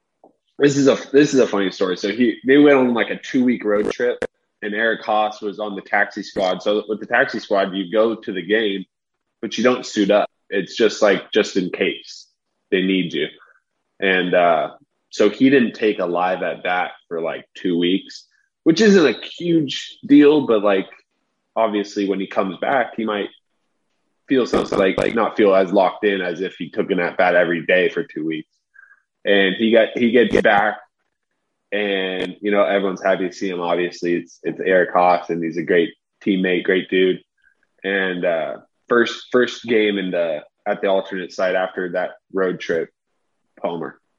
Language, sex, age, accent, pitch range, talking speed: English, male, 20-39, American, 95-115 Hz, 195 wpm